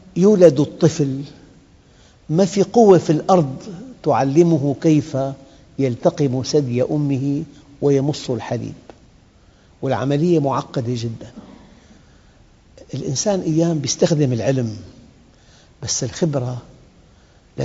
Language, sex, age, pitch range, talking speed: Arabic, male, 50-69, 120-155 Hz, 80 wpm